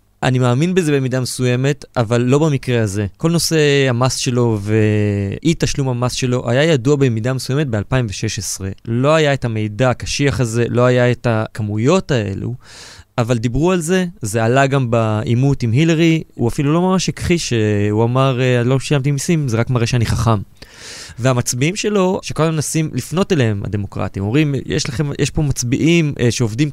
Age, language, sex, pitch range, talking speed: 20-39, Hebrew, male, 115-150 Hz, 160 wpm